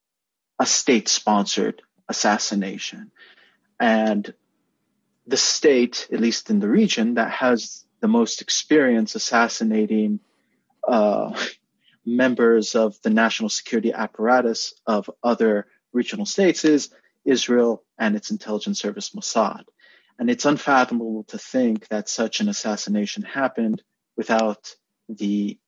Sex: male